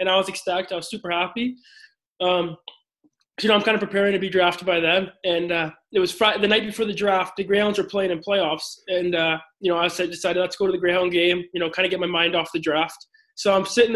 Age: 20-39